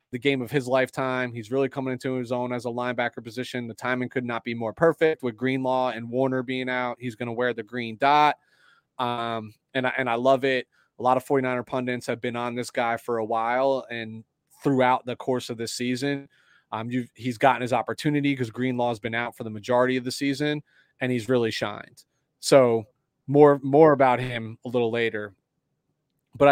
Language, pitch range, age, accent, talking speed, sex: English, 120-140 Hz, 30-49, American, 210 wpm, male